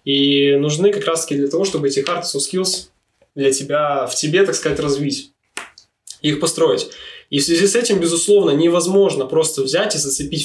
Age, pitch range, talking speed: 20-39, 140-170 Hz, 180 wpm